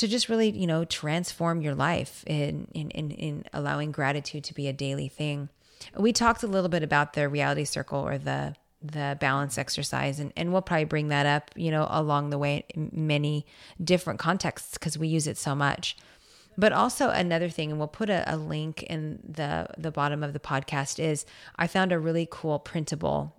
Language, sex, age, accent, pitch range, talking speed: English, female, 30-49, American, 145-165 Hz, 205 wpm